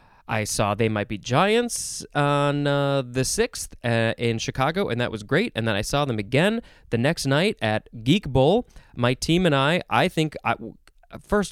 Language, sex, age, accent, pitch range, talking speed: English, male, 20-39, American, 115-145 Hz, 190 wpm